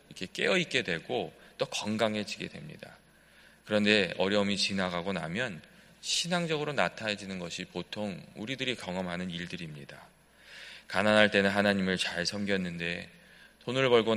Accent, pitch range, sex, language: native, 90-125 Hz, male, Korean